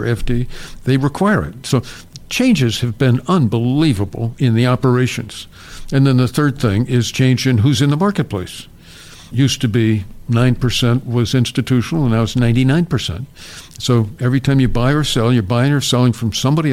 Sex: male